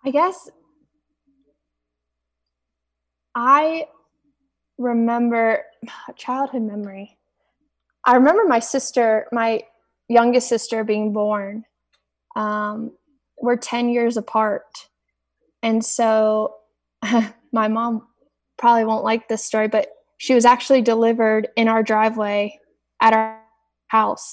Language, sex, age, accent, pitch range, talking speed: English, female, 20-39, American, 215-250 Hz, 100 wpm